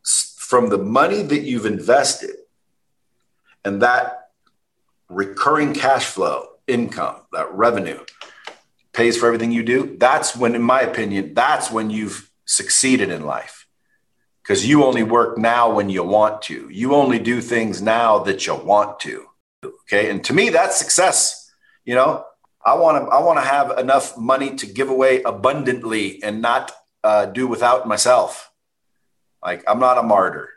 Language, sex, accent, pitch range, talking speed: English, male, American, 110-170 Hz, 155 wpm